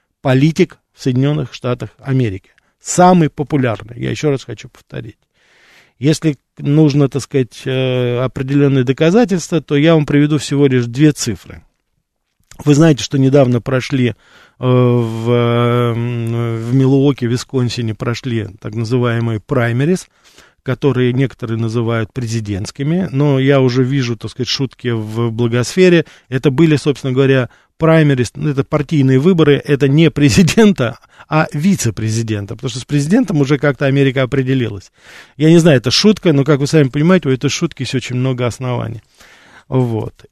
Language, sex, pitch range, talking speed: Russian, male, 120-150 Hz, 135 wpm